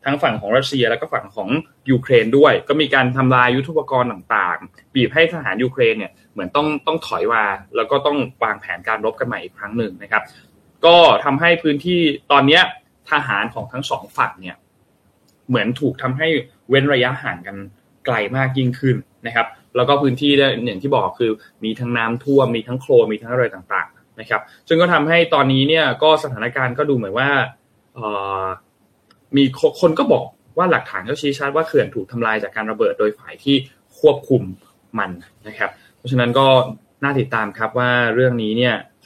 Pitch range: 115-145 Hz